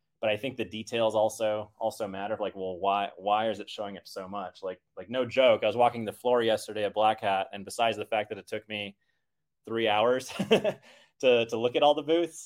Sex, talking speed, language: male, 230 wpm, English